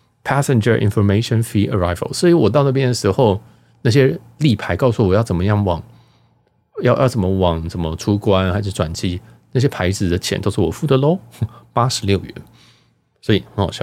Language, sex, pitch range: Chinese, male, 95-125 Hz